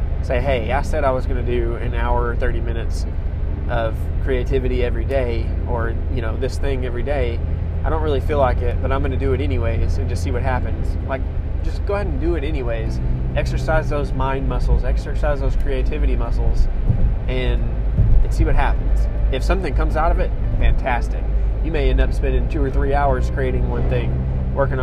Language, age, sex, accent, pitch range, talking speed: English, 20-39, male, American, 65-90 Hz, 200 wpm